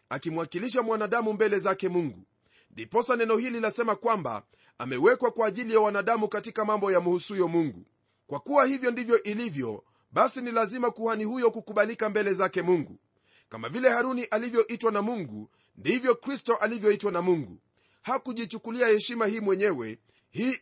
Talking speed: 145 wpm